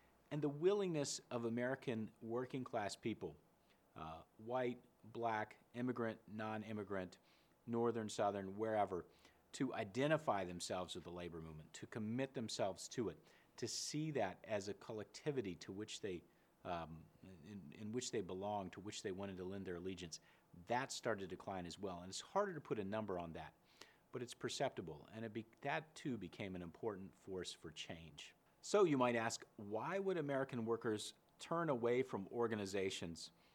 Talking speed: 165 wpm